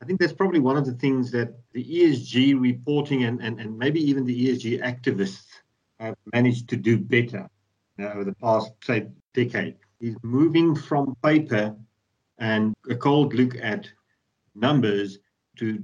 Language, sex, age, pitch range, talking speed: English, male, 50-69, 105-135 Hz, 155 wpm